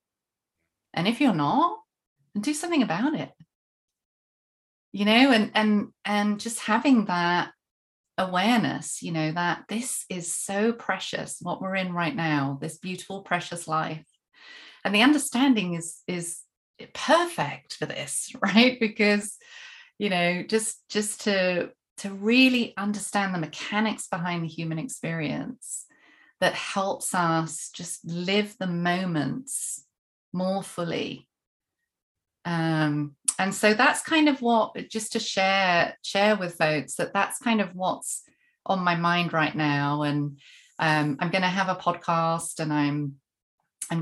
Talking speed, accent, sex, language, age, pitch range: 135 wpm, British, female, English, 30-49, 165-215 Hz